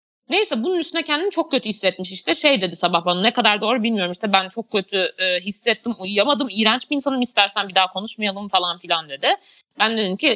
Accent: native